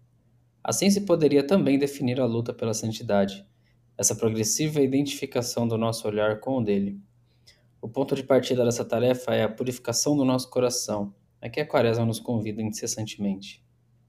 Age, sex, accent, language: 20-39, male, Brazilian, Portuguese